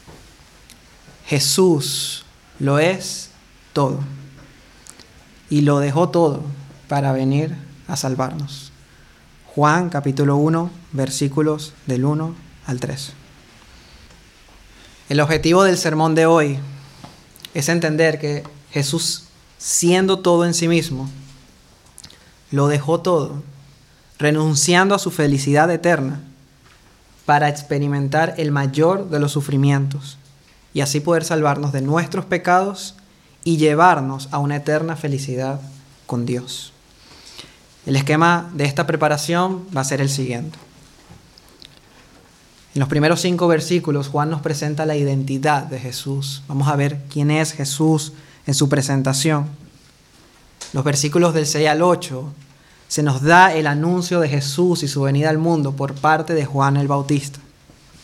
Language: Spanish